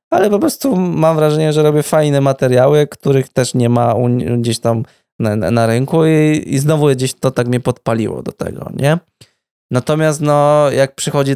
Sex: male